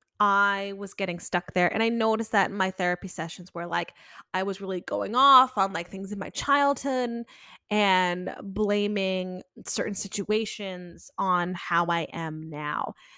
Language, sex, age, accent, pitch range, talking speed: English, female, 20-39, American, 180-225 Hz, 160 wpm